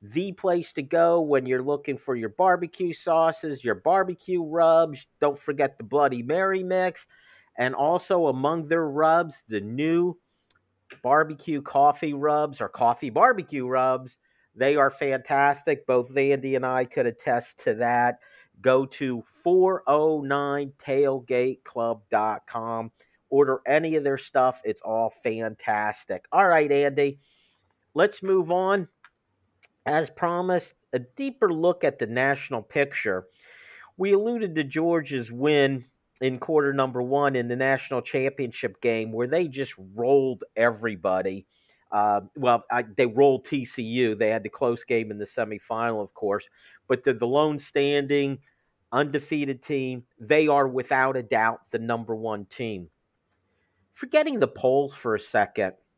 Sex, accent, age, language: male, American, 50-69, English